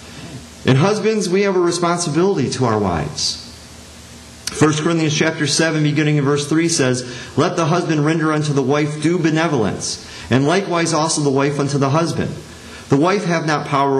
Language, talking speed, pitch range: English, 170 wpm, 120-155 Hz